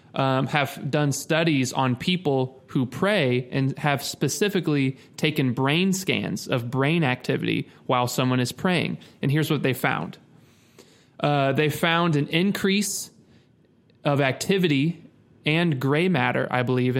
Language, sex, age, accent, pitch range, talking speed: English, male, 20-39, American, 130-155 Hz, 135 wpm